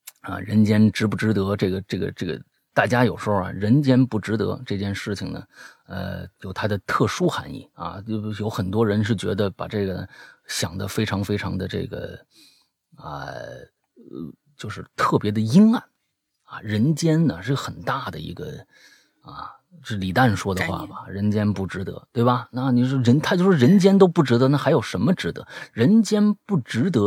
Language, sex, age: Chinese, male, 30-49